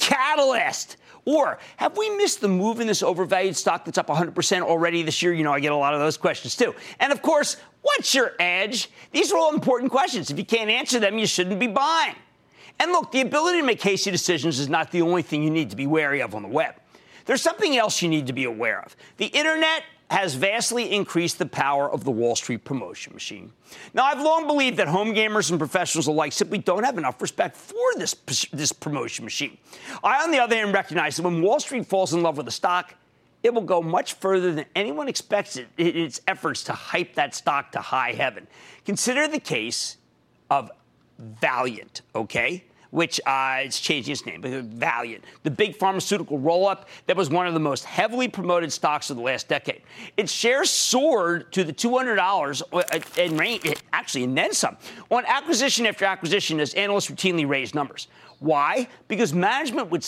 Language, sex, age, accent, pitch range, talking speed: English, male, 50-69, American, 155-235 Hz, 200 wpm